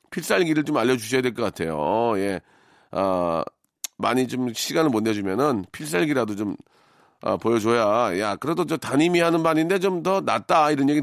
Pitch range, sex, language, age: 120-165 Hz, male, Korean, 40-59